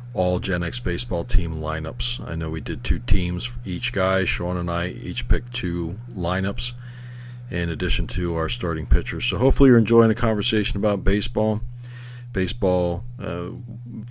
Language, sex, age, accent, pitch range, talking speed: English, male, 50-69, American, 90-120 Hz, 155 wpm